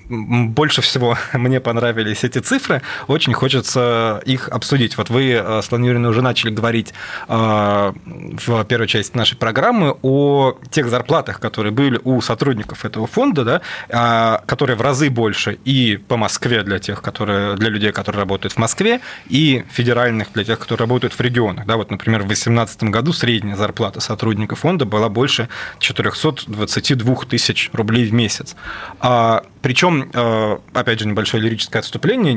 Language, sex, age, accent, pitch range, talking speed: Russian, male, 20-39, native, 110-130 Hz, 145 wpm